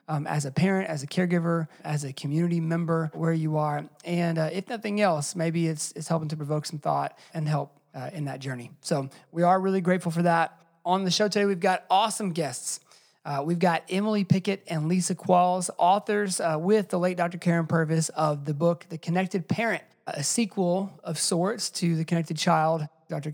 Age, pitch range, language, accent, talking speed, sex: 30-49, 155-190 Hz, English, American, 205 wpm, male